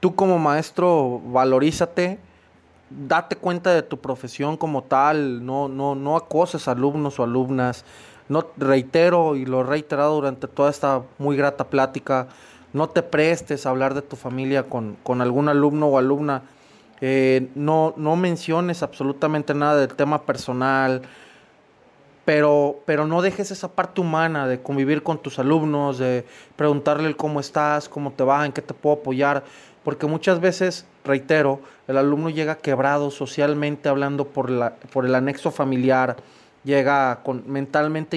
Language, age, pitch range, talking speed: Spanish, 30-49, 135-160 Hz, 150 wpm